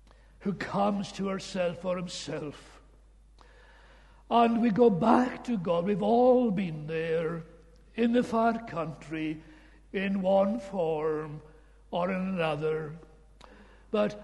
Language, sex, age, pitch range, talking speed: English, male, 60-79, 160-205 Hz, 115 wpm